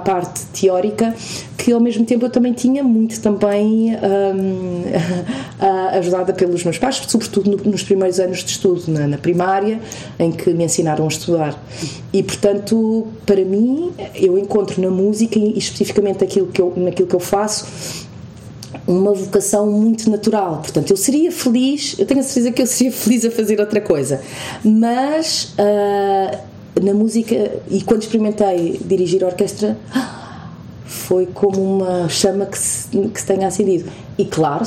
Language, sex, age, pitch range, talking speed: Portuguese, female, 30-49, 170-210 Hz, 160 wpm